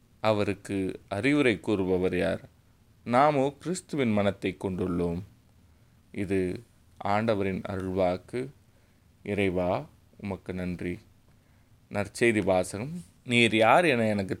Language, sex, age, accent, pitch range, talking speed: Tamil, male, 30-49, native, 95-115 Hz, 80 wpm